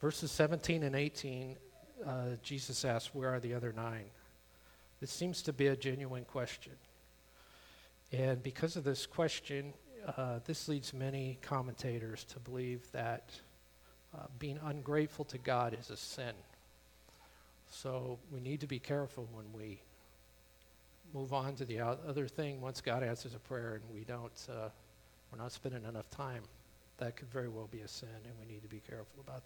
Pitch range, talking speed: 110-140 Hz, 165 wpm